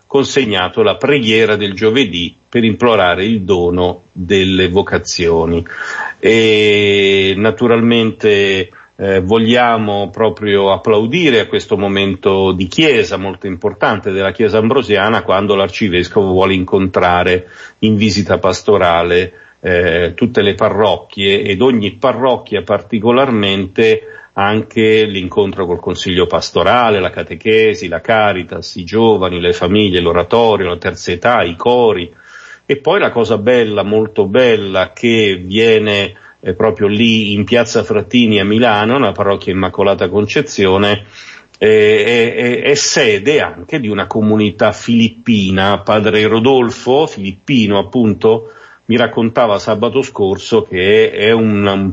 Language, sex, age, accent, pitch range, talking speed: Italian, male, 50-69, native, 95-115 Hz, 120 wpm